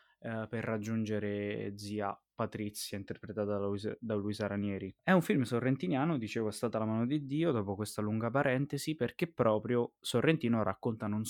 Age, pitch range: 20-39, 105-130 Hz